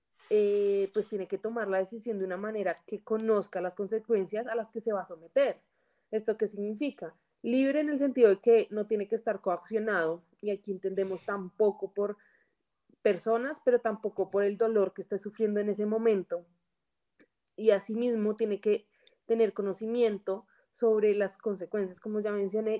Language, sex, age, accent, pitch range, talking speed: Spanish, female, 20-39, Colombian, 200-235 Hz, 170 wpm